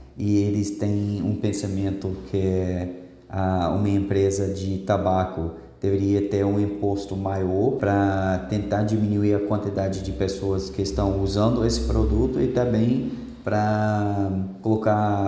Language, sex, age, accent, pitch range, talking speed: Portuguese, male, 20-39, Brazilian, 100-115 Hz, 120 wpm